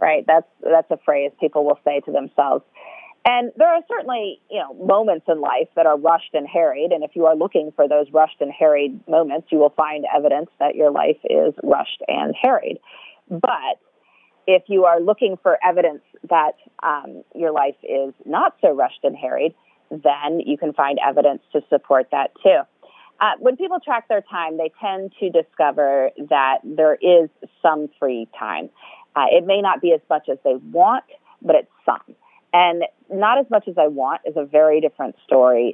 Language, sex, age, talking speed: English, female, 30-49, 190 wpm